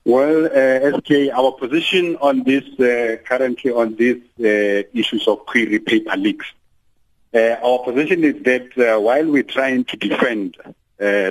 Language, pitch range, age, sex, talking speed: English, 105-150 Hz, 50-69, male, 155 wpm